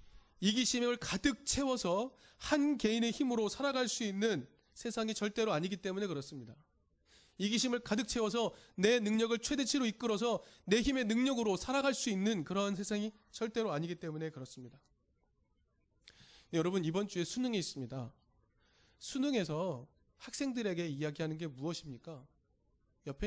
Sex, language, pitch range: male, Korean, 170-235 Hz